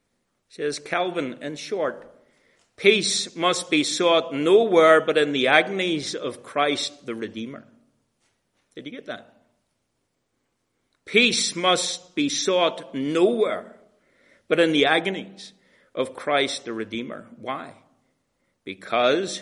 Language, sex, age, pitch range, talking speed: English, male, 60-79, 135-180 Hz, 110 wpm